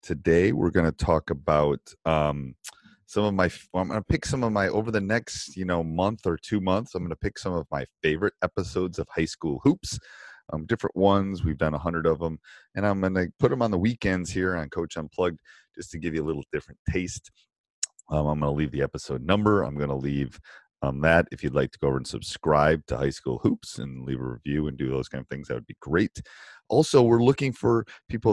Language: English